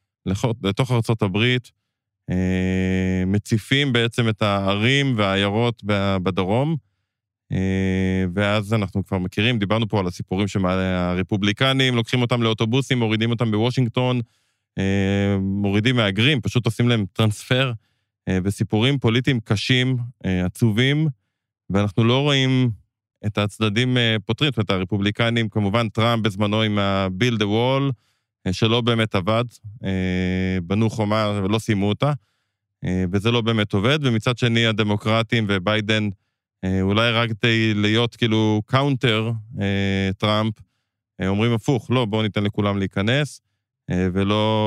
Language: Hebrew